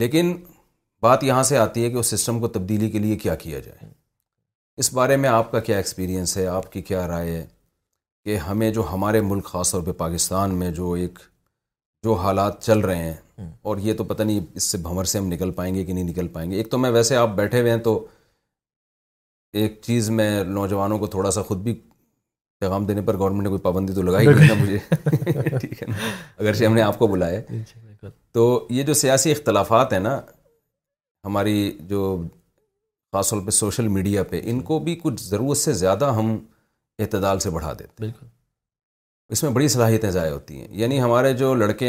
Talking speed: 200 wpm